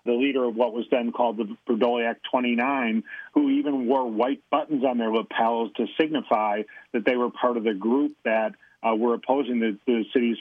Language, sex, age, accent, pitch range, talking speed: English, male, 40-59, American, 120-150 Hz, 200 wpm